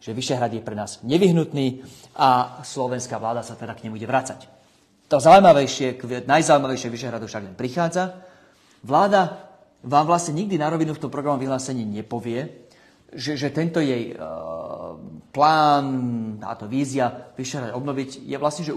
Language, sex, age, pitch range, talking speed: Slovak, male, 40-59, 115-140 Hz, 145 wpm